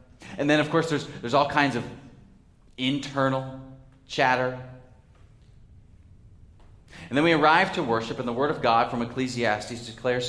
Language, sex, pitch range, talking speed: English, male, 95-130 Hz, 145 wpm